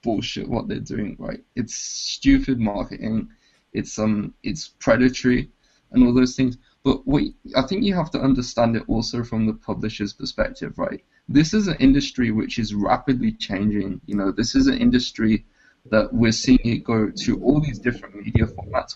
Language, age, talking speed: English, 20-39, 180 wpm